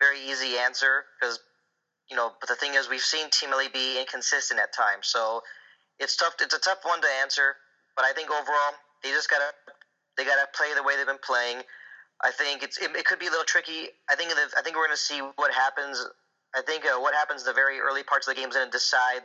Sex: male